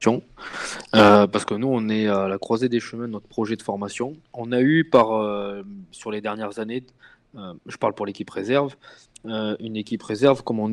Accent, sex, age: French, male, 20-39